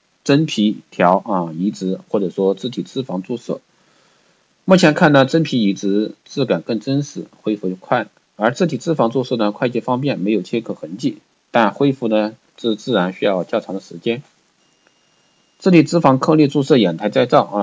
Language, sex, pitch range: Chinese, male, 100-130 Hz